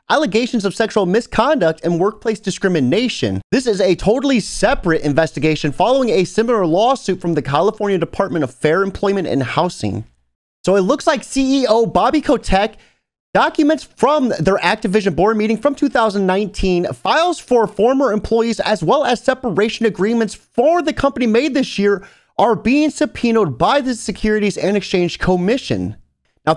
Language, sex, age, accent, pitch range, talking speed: English, male, 30-49, American, 185-255 Hz, 150 wpm